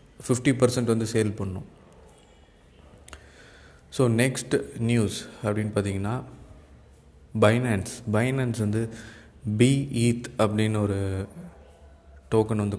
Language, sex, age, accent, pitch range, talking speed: Tamil, male, 20-39, native, 100-115 Hz, 85 wpm